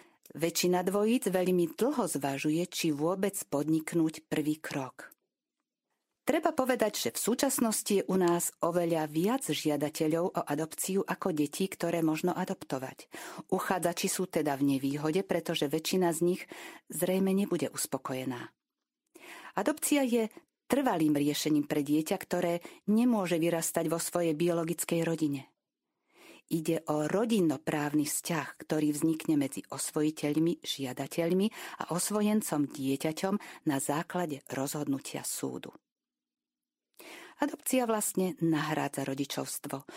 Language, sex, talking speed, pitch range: Slovak, female, 110 wpm, 150-205 Hz